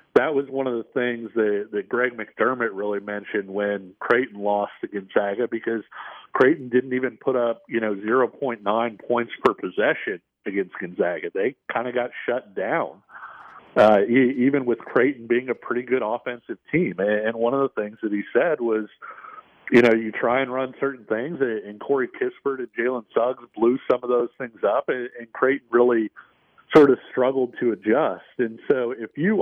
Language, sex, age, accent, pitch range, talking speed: English, male, 50-69, American, 115-135 Hz, 180 wpm